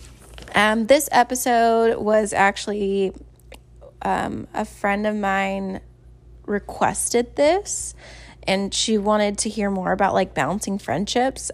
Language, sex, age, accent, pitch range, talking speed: English, female, 10-29, American, 180-235 Hz, 110 wpm